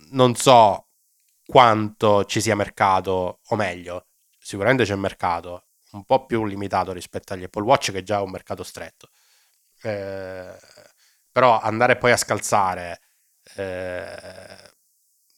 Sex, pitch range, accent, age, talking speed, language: male, 95-110 Hz, native, 20-39, 130 wpm, Italian